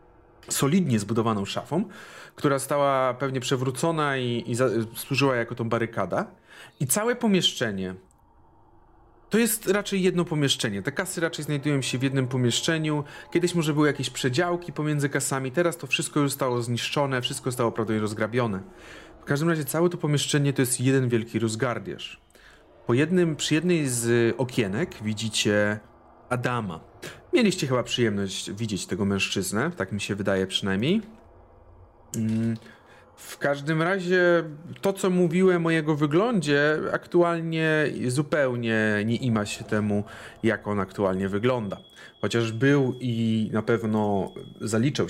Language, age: Polish, 40-59